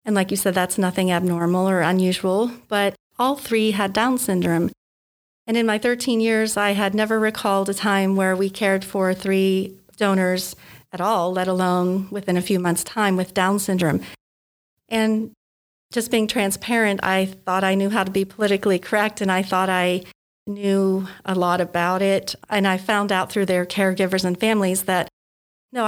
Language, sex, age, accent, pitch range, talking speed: English, female, 40-59, American, 185-210 Hz, 180 wpm